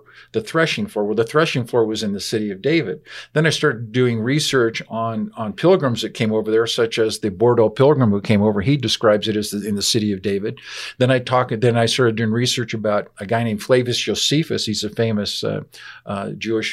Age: 50-69